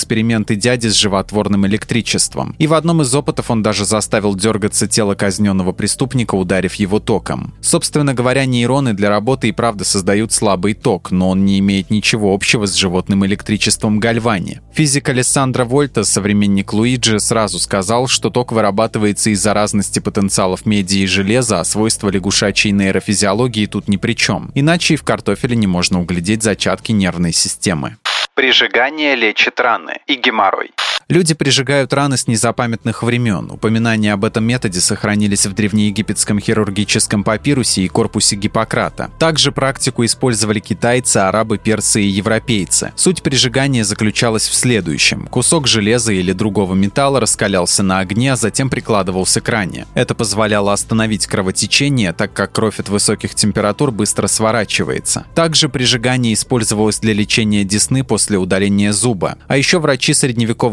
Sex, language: male, Russian